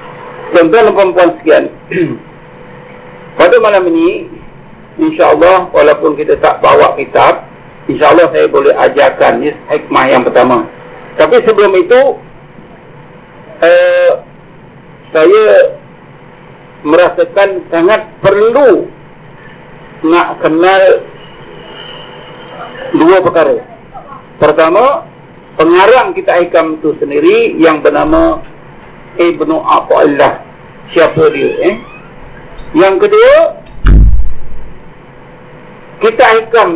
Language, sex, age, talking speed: Malay, male, 50-69, 85 wpm